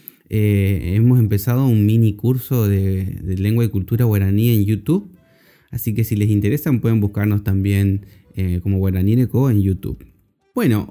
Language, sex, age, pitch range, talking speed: Spanish, male, 20-39, 100-135 Hz, 155 wpm